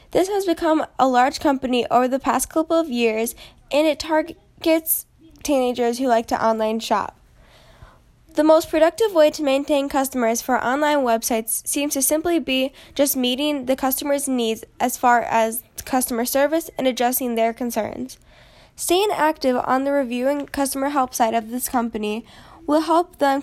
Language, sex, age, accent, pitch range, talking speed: English, female, 10-29, American, 240-295 Hz, 165 wpm